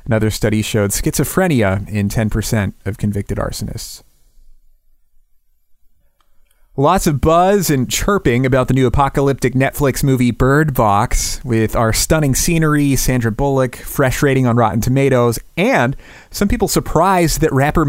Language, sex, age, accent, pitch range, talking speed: English, male, 30-49, American, 105-145 Hz, 130 wpm